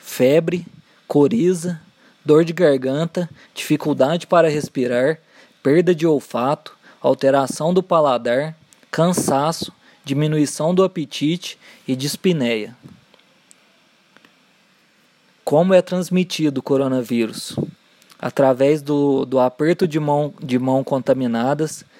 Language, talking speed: Portuguese, 95 wpm